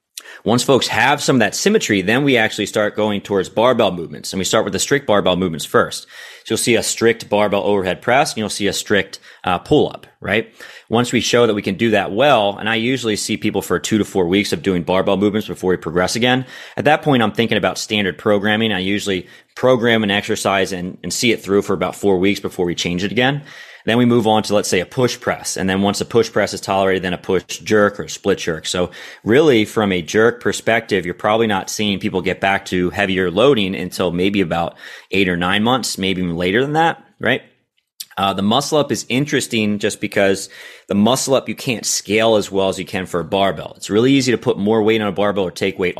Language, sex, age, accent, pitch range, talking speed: English, male, 30-49, American, 95-110 Hz, 235 wpm